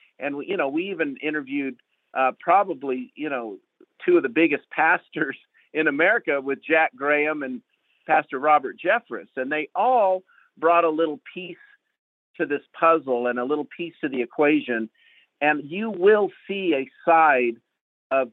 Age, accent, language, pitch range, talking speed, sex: 50-69, American, English, 130-185 Hz, 155 wpm, male